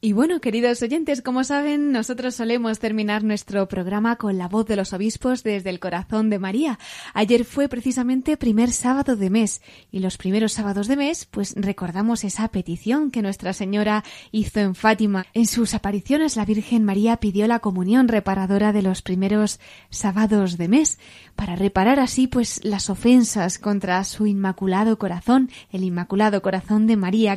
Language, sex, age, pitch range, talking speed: Spanish, female, 20-39, 200-245 Hz, 165 wpm